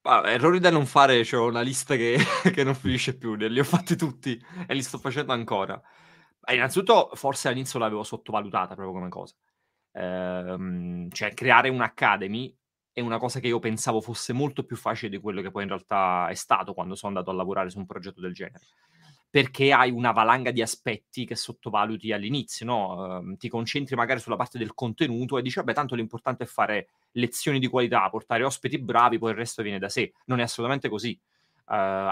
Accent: native